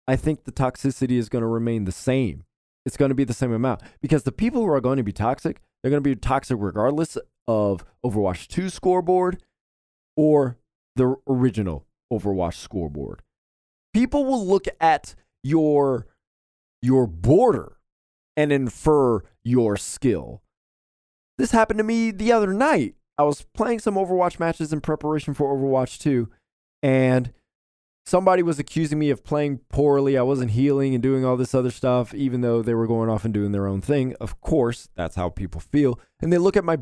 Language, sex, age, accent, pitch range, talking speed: English, male, 20-39, American, 110-155 Hz, 180 wpm